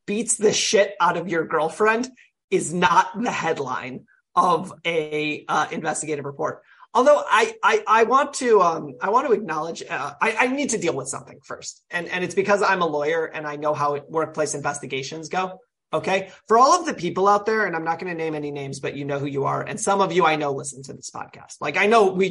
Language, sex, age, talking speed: English, male, 30-49, 230 wpm